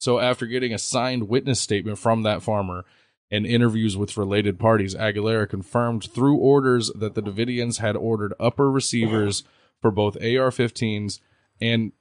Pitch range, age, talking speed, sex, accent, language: 100-120 Hz, 20-39, 155 wpm, male, American, English